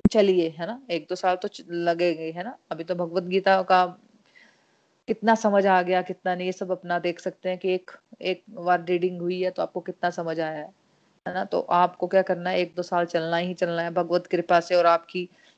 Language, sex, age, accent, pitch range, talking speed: Hindi, female, 30-49, native, 175-195 Hz, 140 wpm